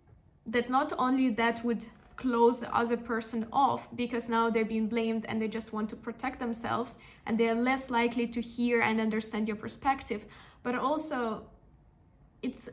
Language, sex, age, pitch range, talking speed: English, female, 10-29, 225-250 Hz, 170 wpm